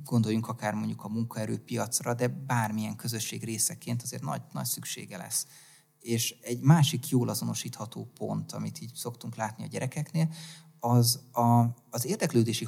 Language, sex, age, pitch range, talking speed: Hungarian, male, 30-49, 110-130 Hz, 135 wpm